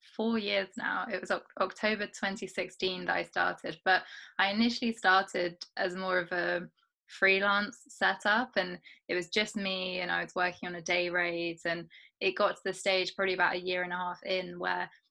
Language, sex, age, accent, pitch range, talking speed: English, female, 10-29, British, 180-205 Hz, 190 wpm